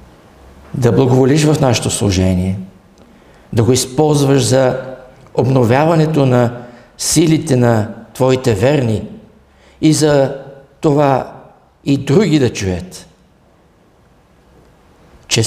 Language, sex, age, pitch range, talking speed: English, male, 60-79, 90-125 Hz, 90 wpm